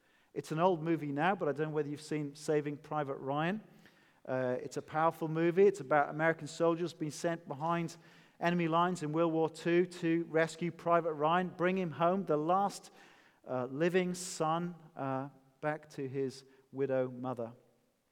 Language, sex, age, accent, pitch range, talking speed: English, male, 40-59, British, 140-180 Hz, 170 wpm